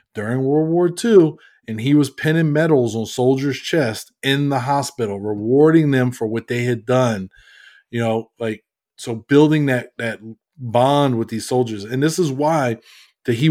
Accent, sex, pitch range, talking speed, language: American, male, 115-150 Hz, 175 wpm, English